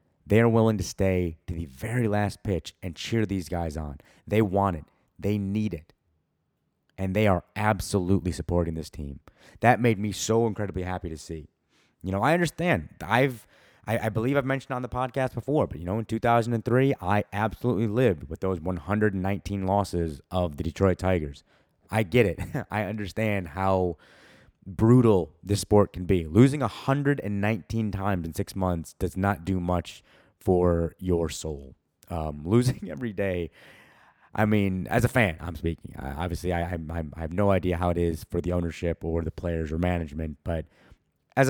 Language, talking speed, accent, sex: English, 185 wpm, American, male